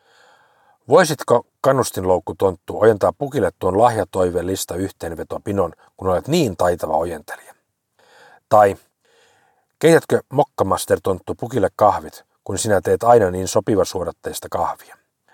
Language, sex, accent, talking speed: Finnish, male, native, 110 wpm